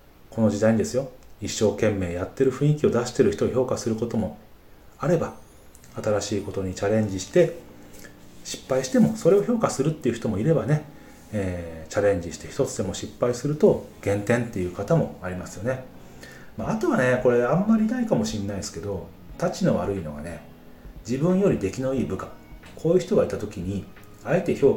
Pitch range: 90-130 Hz